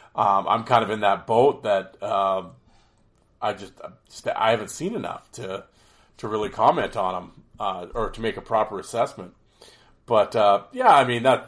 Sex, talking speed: male, 180 wpm